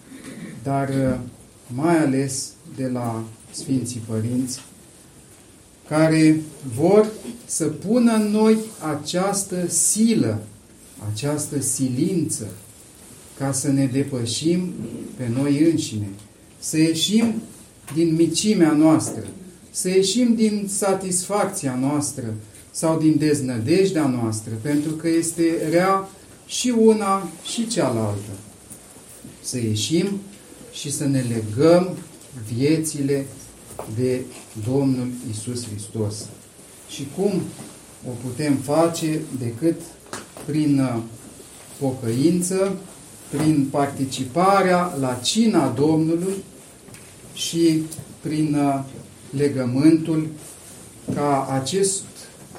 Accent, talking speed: native, 85 wpm